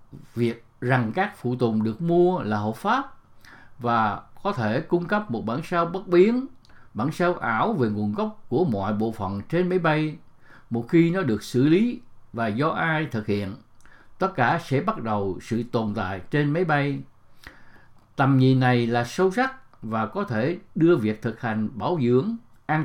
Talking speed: 185 wpm